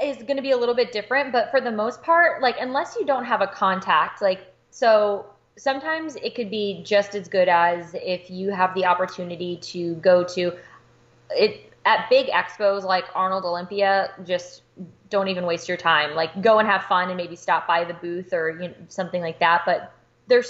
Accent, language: American, English